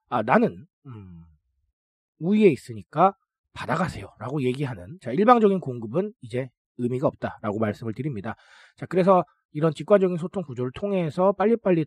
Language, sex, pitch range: Korean, male, 110-185 Hz